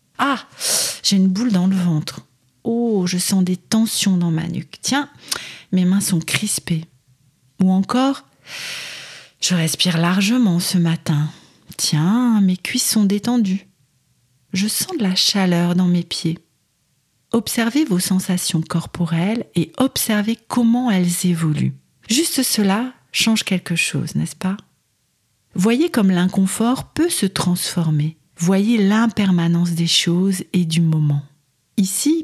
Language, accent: French, French